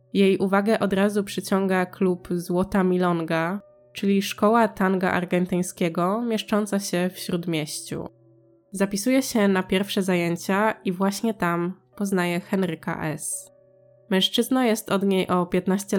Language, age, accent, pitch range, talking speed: Polish, 20-39, native, 170-200 Hz, 125 wpm